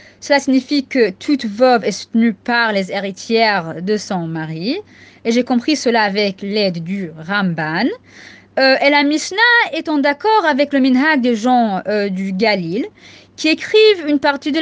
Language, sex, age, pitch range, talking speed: French, female, 20-39, 225-370 Hz, 170 wpm